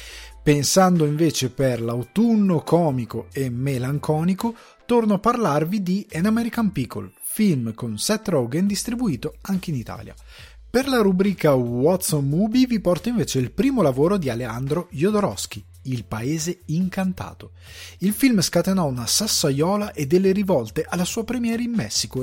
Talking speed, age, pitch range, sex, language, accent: 145 wpm, 30-49, 125-205 Hz, male, Italian, native